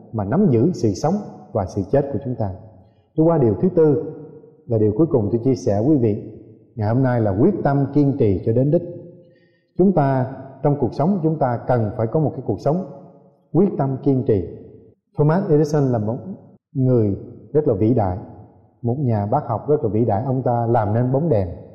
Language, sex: Vietnamese, male